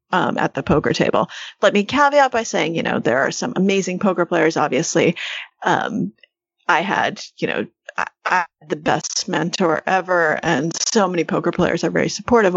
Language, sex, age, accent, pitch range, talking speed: English, female, 30-49, American, 170-230 Hz, 180 wpm